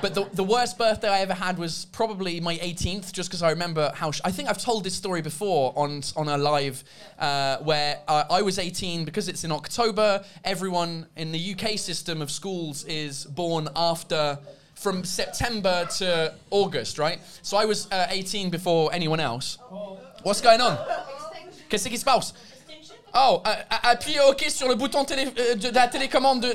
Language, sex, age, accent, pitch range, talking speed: English, male, 20-39, British, 155-210 Hz, 170 wpm